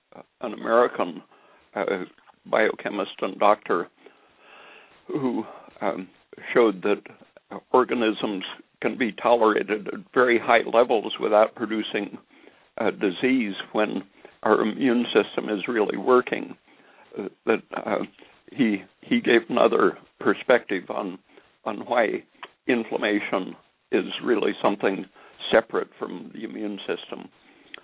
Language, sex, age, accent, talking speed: English, male, 60-79, American, 110 wpm